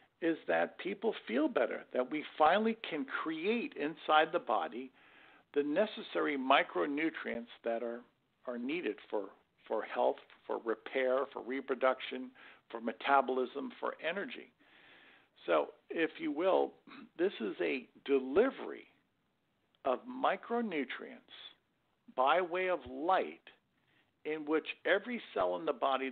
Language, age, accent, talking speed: English, 50-69, American, 120 wpm